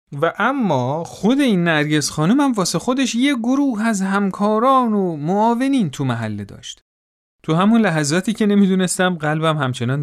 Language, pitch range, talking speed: Persian, 145-210 Hz, 145 wpm